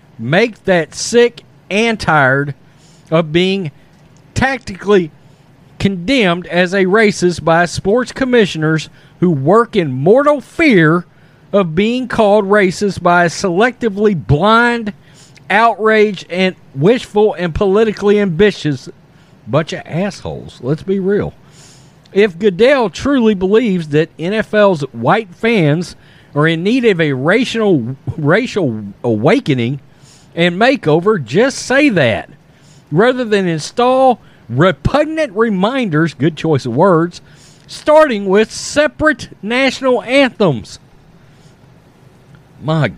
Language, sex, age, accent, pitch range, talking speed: English, male, 40-59, American, 150-220 Hz, 105 wpm